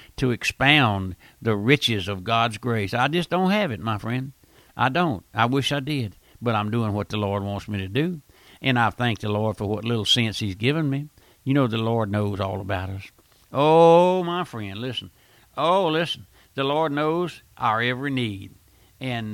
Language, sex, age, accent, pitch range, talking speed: English, male, 60-79, American, 105-140 Hz, 195 wpm